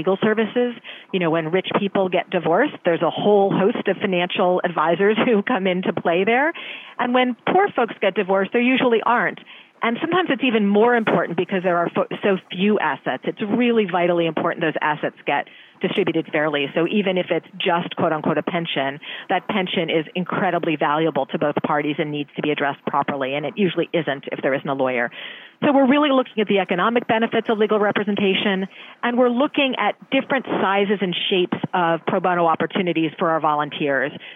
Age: 40-59